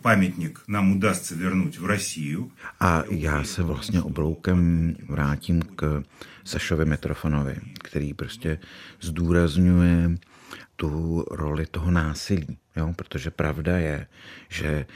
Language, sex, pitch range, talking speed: Czech, male, 80-95 Hz, 105 wpm